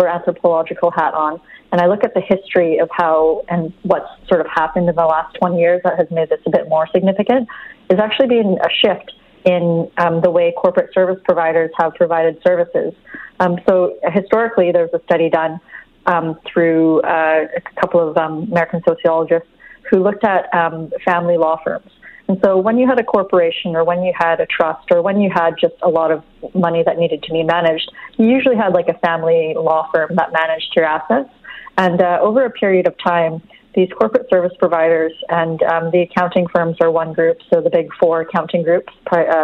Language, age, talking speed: English, 30-49, 200 wpm